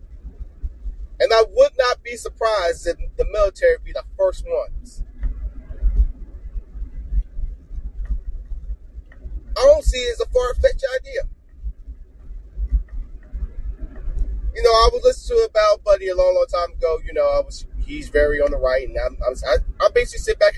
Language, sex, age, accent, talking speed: English, male, 30-49, American, 145 wpm